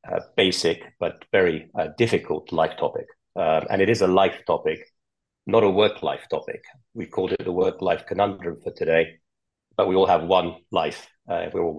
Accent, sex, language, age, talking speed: British, male, English, 40-59, 190 wpm